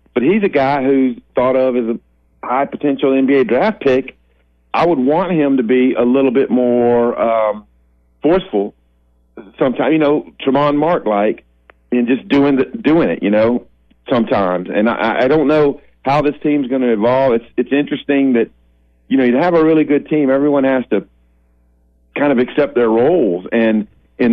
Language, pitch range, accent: English, 105-140 Hz, American